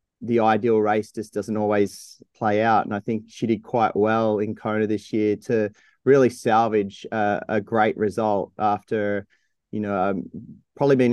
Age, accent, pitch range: 30-49, Australian, 100-110 Hz